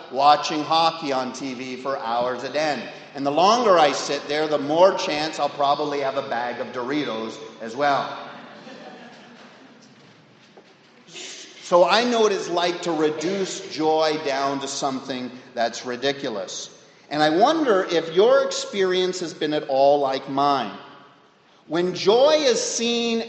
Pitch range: 150-195 Hz